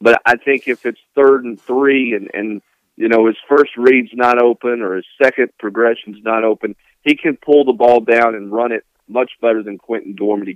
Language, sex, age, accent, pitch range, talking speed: English, male, 50-69, American, 110-125 Hz, 210 wpm